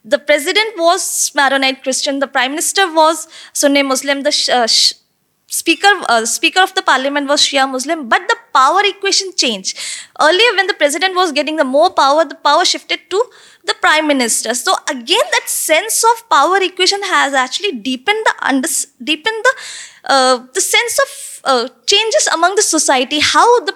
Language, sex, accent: English, female, Indian